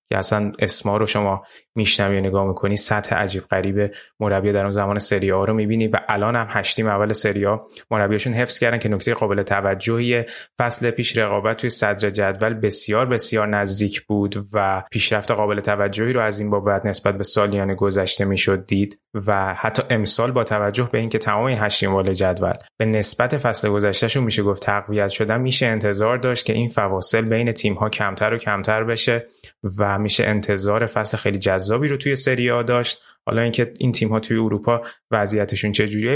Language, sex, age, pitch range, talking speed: Persian, male, 20-39, 105-120 Hz, 175 wpm